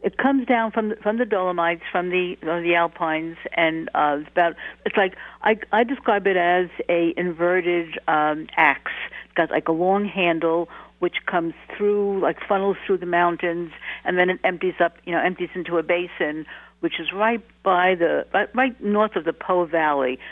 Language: English